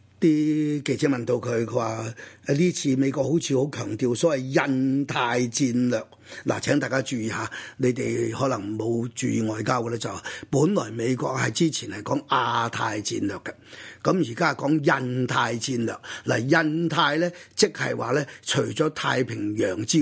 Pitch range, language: 120-150 Hz, Chinese